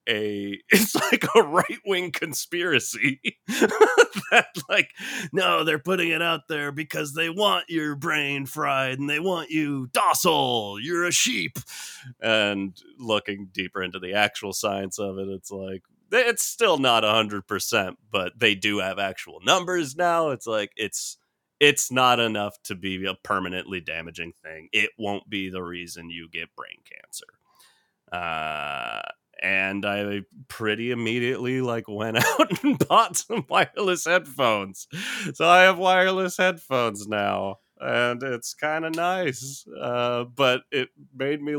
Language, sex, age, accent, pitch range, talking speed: English, male, 30-49, American, 100-165 Hz, 145 wpm